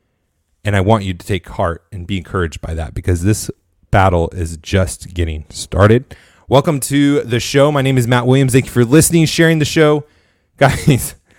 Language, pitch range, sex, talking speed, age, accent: English, 90-130 Hz, male, 190 wpm, 30-49, American